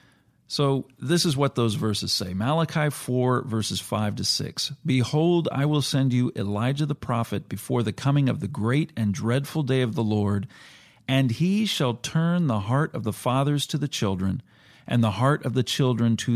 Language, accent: English, American